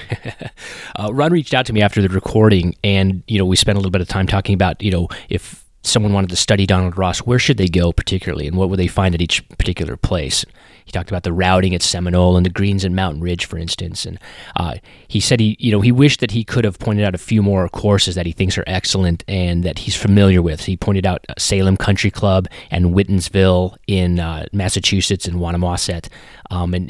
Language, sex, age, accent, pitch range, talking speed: English, male, 30-49, American, 90-100 Hz, 230 wpm